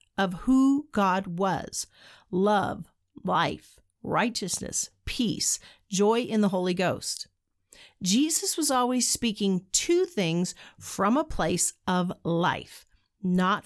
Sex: female